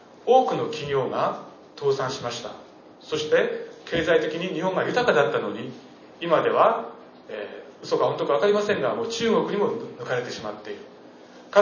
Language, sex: Japanese, male